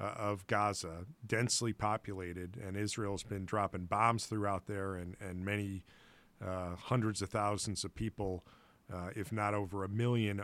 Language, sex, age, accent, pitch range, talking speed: English, male, 40-59, American, 95-110 Hz, 150 wpm